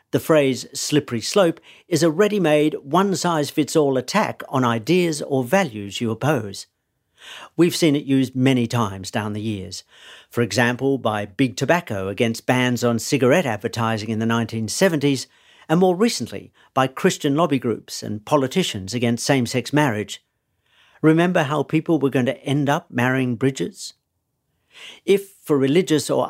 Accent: British